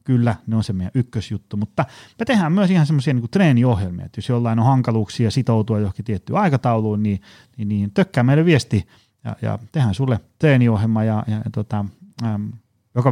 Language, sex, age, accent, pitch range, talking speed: Finnish, male, 30-49, native, 100-130 Hz, 190 wpm